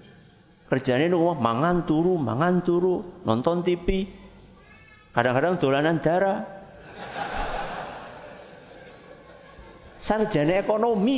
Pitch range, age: 115-175 Hz, 50-69